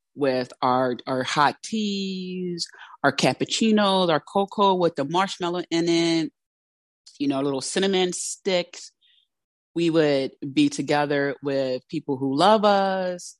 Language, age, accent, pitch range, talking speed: English, 30-49, American, 130-180 Hz, 125 wpm